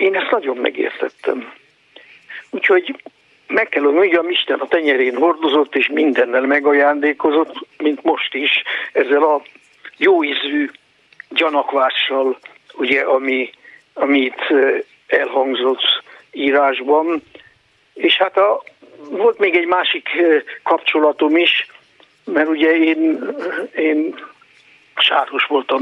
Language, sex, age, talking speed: Hungarian, male, 60-79, 100 wpm